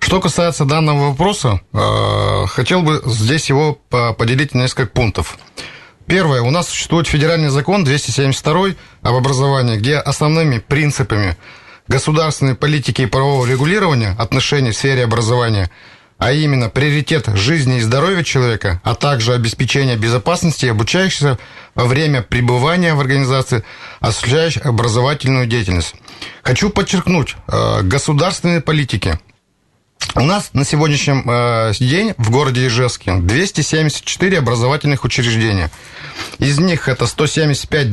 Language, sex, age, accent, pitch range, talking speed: Russian, male, 30-49, native, 120-155 Hz, 115 wpm